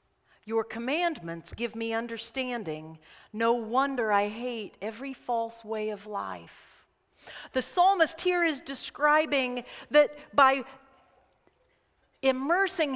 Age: 50-69